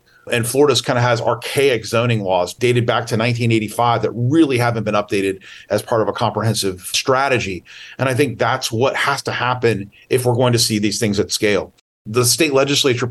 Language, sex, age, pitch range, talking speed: English, male, 40-59, 110-135 Hz, 195 wpm